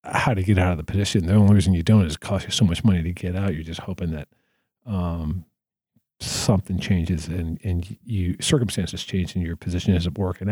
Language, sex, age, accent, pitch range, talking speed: English, male, 40-59, American, 90-120 Hz, 220 wpm